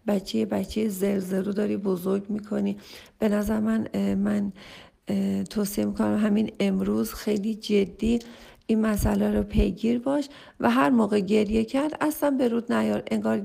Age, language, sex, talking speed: 40-59, Persian, female, 150 wpm